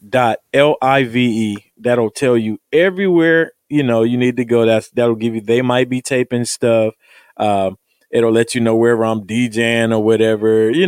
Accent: American